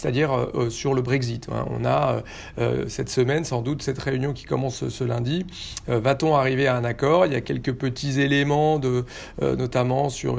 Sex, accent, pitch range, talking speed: male, French, 120-140 Hz, 190 wpm